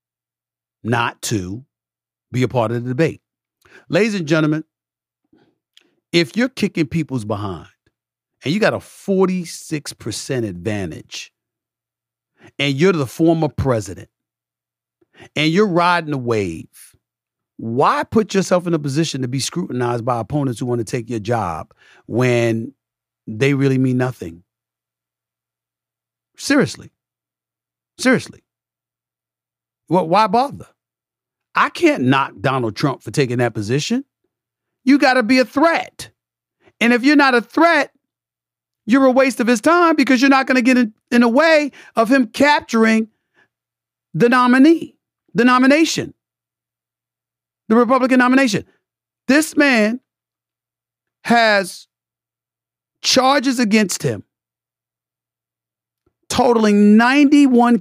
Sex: male